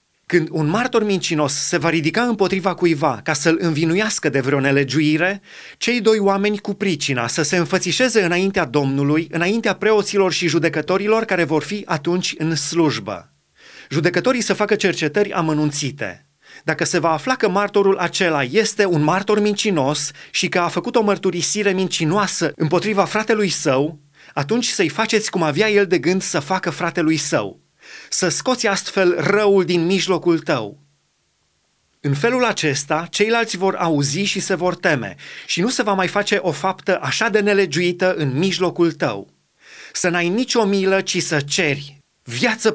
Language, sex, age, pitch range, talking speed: Romanian, male, 30-49, 155-205 Hz, 155 wpm